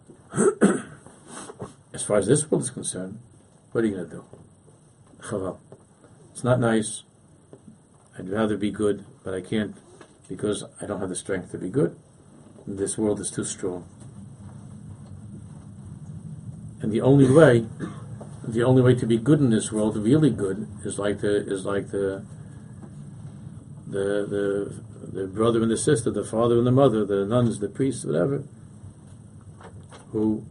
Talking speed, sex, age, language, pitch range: 150 wpm, male, 50-69, English, 100-120 Hz